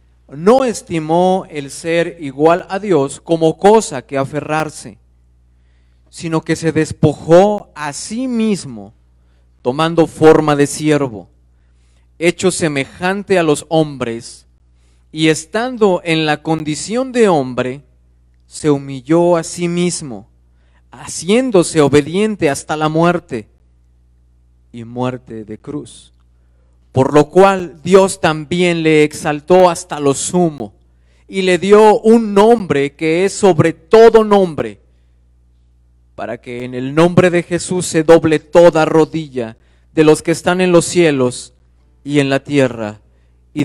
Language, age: Spanish, 40-59